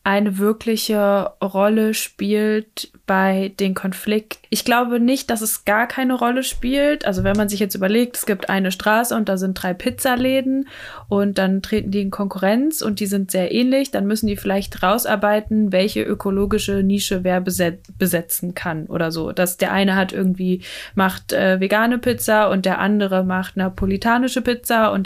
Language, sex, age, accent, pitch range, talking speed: German, female, 20-39, German, 190-220 Hz, 170 wpm